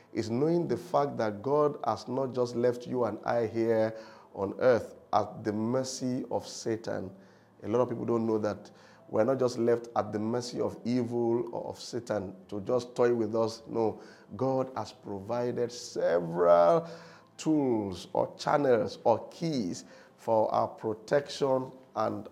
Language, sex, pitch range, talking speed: English, male, 105-125 Hz, 160 wpm